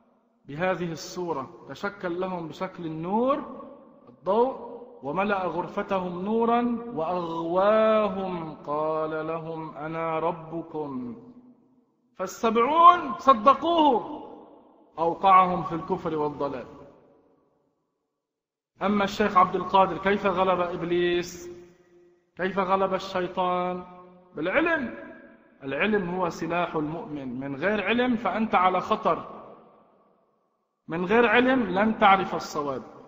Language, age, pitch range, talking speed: Arabic, 40-59, 165-235 Hz, 85 wpm